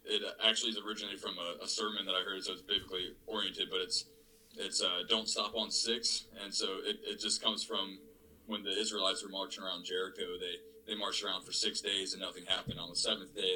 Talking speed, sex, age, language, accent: 225 wpm, male, 20-39, English, American